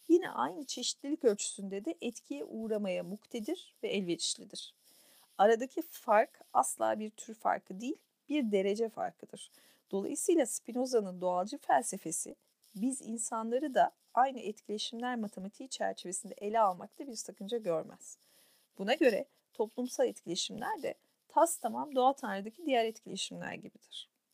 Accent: native